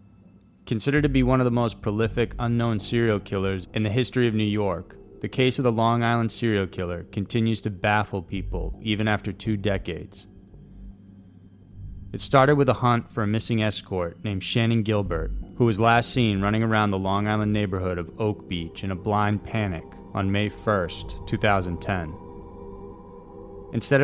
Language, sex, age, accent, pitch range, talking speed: English, male, 30-49, American, 95-115 Hz, 165 wpm